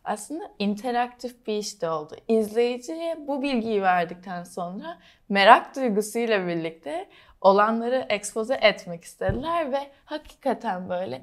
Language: Turkish